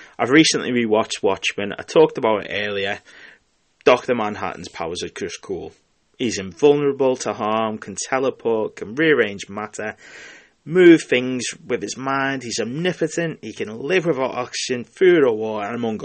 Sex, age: male, 30-49